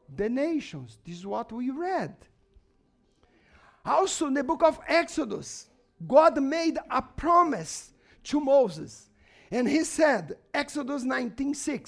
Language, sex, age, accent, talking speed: English, male, 50-69, Brazilian, 115 wpm